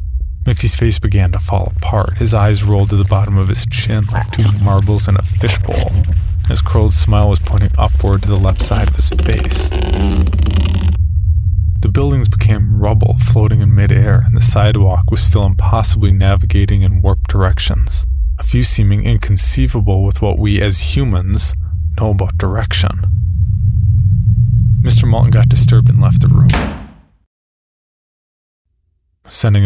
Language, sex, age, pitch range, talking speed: English, male, 20-39, 90-105 Hz, 145 wpm